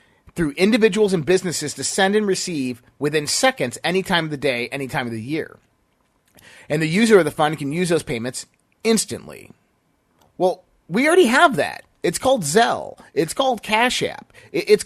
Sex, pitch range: male, 150-205 Hz